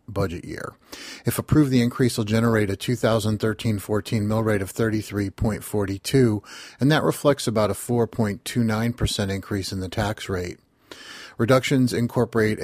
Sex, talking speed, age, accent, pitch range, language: male, 130 wpm, 40-59, American, 100-115 Hz, English